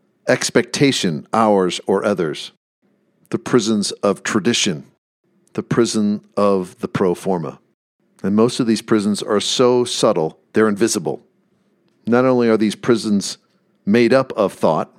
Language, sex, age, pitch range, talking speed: English, male, 50-69, 105-130 Hz, 130 wpm